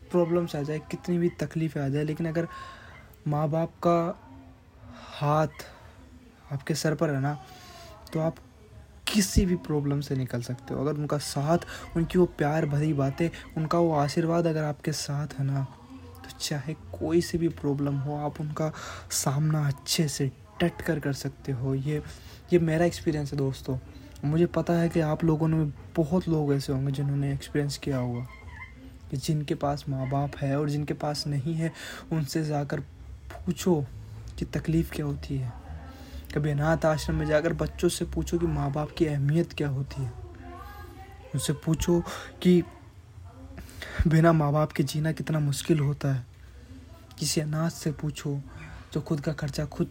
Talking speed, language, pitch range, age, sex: 165 wpm, Hindi, 135-160 Hz, 20-39, male